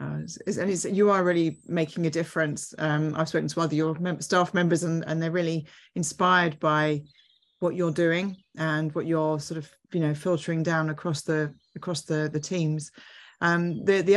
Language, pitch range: English, 155-175 Hz